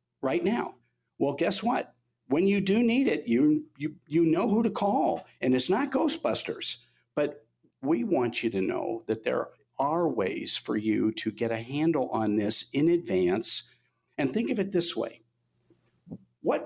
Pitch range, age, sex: 120-175 Hz, 50-69, male